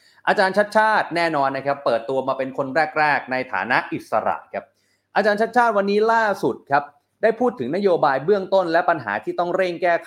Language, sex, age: Thai, male, 30-49